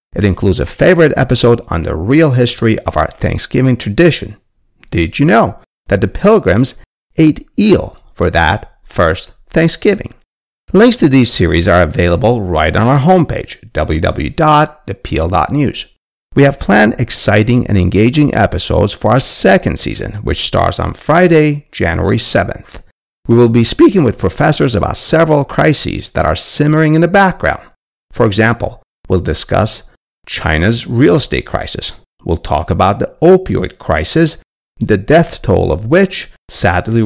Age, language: 50-69, English